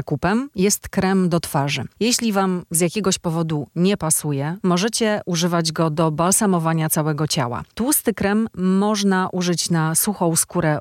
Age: 30-49